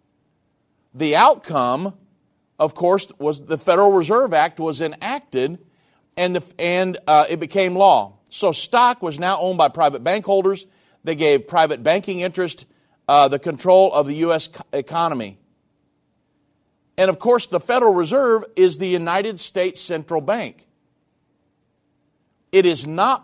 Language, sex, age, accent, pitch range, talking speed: English, male, 50-69, American, 155-195 Hz, 140 wpm